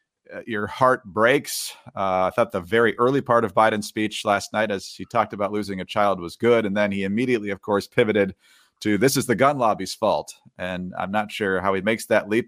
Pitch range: 100-125 Hz